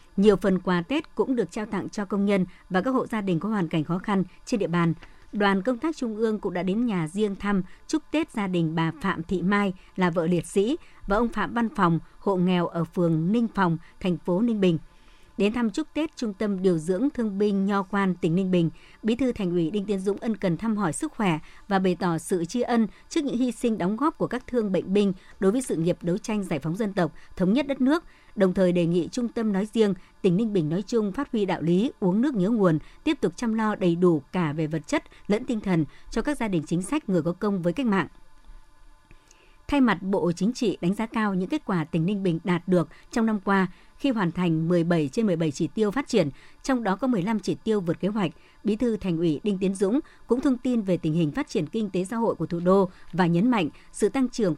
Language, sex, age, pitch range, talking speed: Vietnamese, male, 60-79, 175-230 Hz, 255 wpm